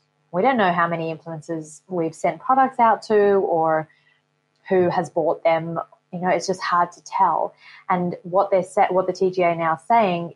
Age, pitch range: 20-39, 165-195 Hz